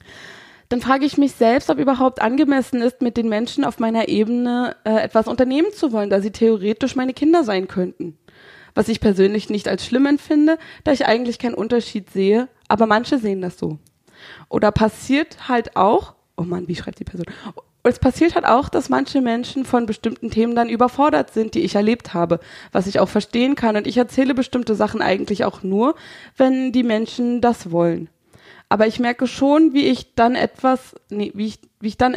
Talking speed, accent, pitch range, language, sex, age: 195 wpm, German, 215-265 Hz, German, female, 20-39